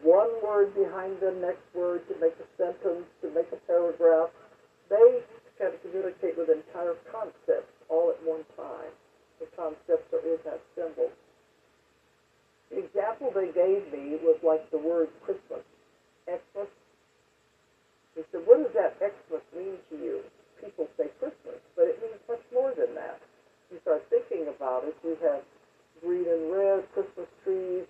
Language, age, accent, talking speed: English, 60-79, American, 155 wpm